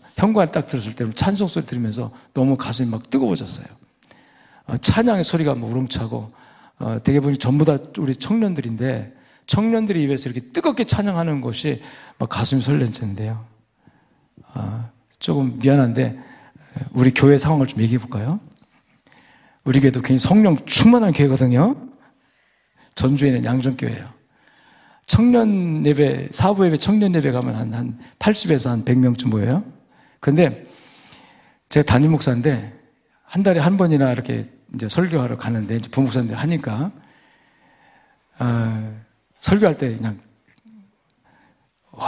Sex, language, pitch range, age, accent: male, Korean, 125-185 Hz, 40-59, native